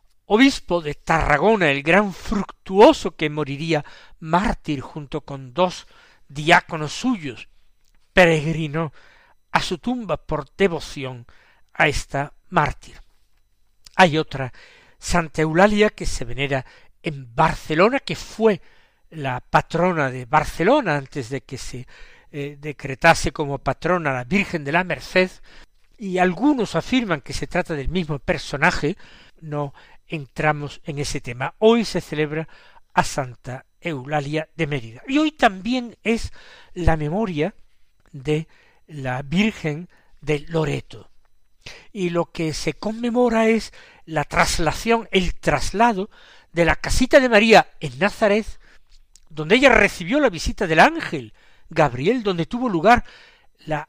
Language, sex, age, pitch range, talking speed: Spanish, male, 60-79, 145-195 Hz, 125 wpm